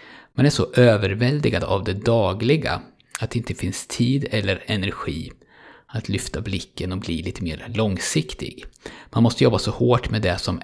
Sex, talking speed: male, 170 wpm